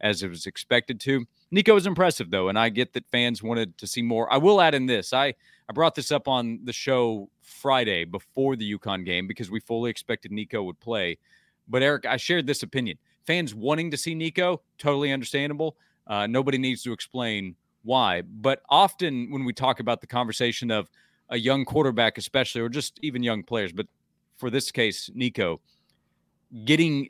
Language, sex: English, male